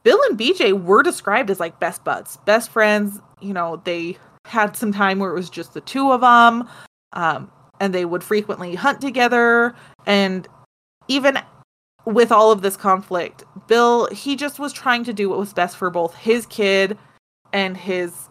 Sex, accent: female, American